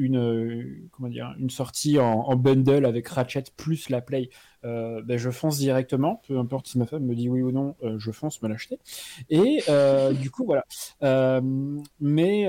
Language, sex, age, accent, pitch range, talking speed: French, male, 30-49, French, 125-145 Hz, 190 wpm